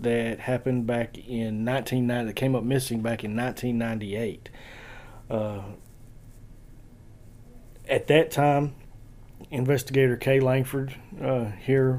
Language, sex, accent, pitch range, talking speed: English, male, American, 115-130 Hz, 105 wpm